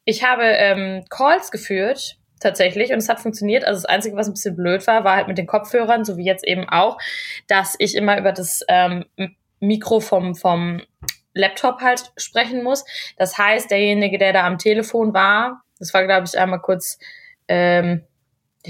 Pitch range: 190-220 Hz